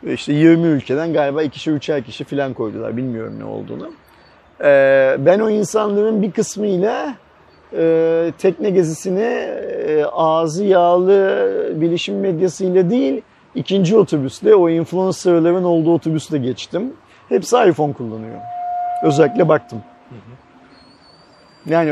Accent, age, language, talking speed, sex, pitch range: native, 40-59, Turkish, 105 wpm, male, 150-190 Hz